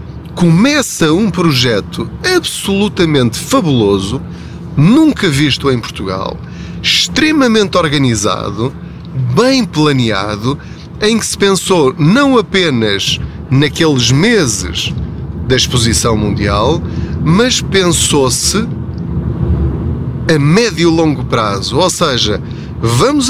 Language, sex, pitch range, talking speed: Portuguese, male, 120-185 Hz, 85 wpm